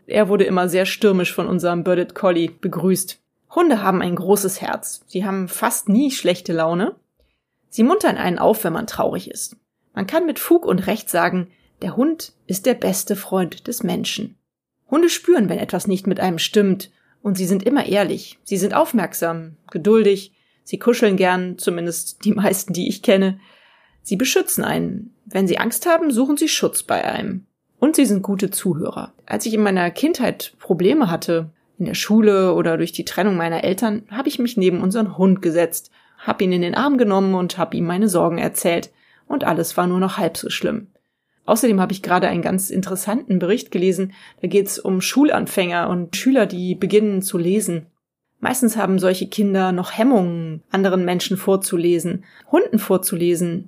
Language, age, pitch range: German, 30-49, 180-215 Hz